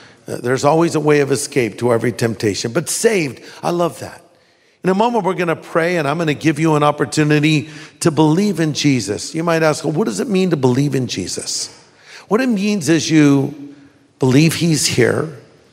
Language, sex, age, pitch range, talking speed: English, male, 50-69, 125-175 Hz, 190 wpm